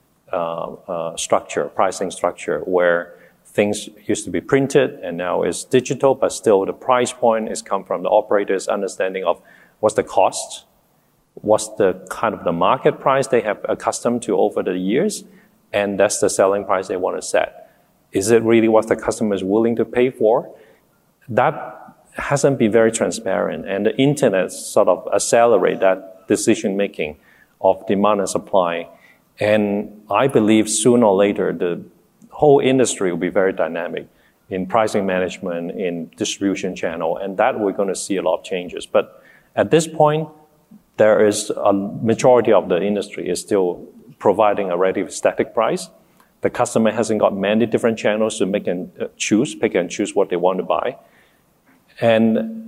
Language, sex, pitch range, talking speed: English, male, 100-130 Hz, 165 wpm